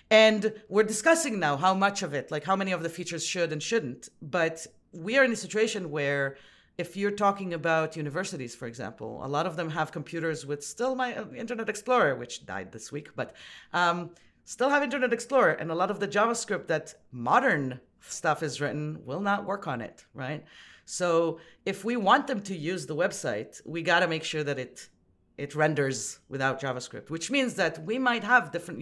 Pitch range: 145-205 Hz